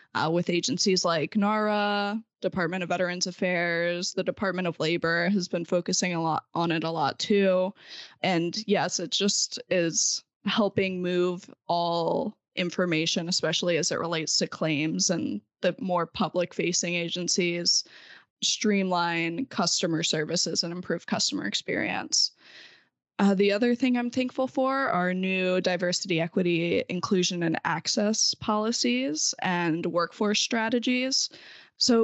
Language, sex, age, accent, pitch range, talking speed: English, female, 10-29, American, 170-200 Hz, 130 wpm